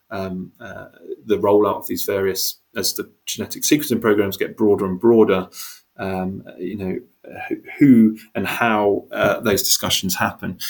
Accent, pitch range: British, 100-115 Hz